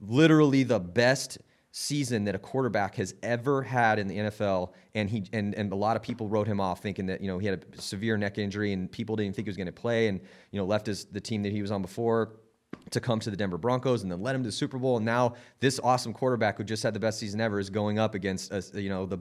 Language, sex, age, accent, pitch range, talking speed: English, male, 30-49, American, 100-125 Hz, 280 wpm